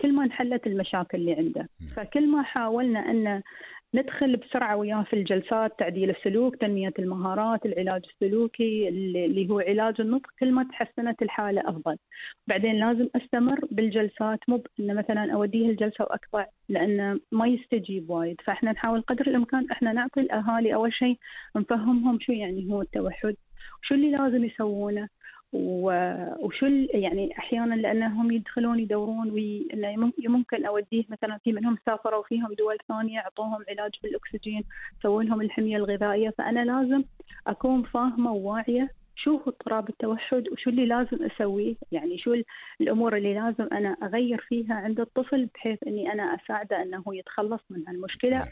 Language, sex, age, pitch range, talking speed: Arabic, female, 30-49, 210-245 Hz, 140 wpm